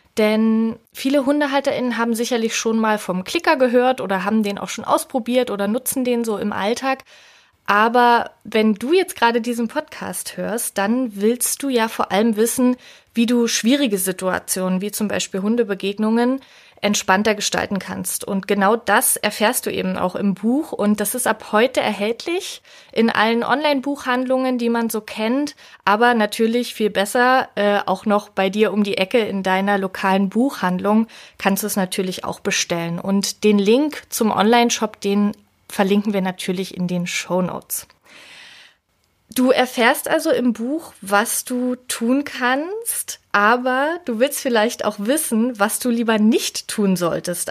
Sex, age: female, 20-39